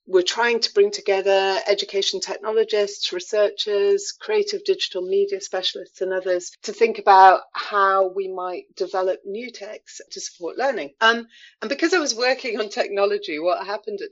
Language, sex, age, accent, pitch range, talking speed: English, female, 40-59, British, 175-265 Hz, 155 wpm